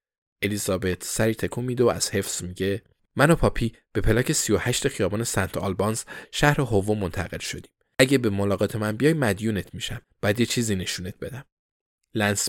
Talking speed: 165 wpm